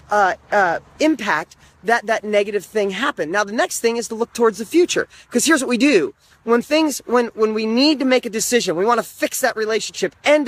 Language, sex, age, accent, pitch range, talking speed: English, male, 30-49, American, 205-280 Hz, 230 wpm